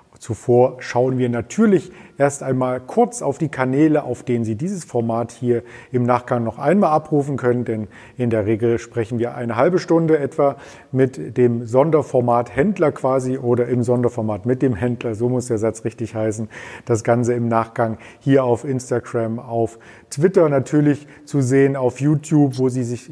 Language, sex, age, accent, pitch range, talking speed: German, male, 40-59, German, 120-145 Hz, 170 wpm